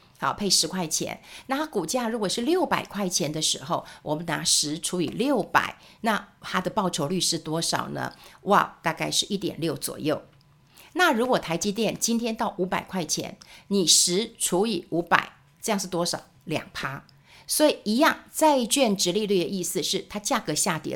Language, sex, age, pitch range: Chinese, female, 50-69, 170-225 Hz